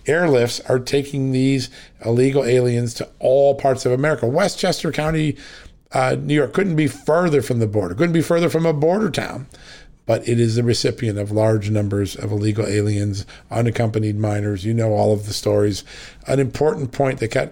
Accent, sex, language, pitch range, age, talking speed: American, male, English, 110-140 Hz, 50-69, 180 wpm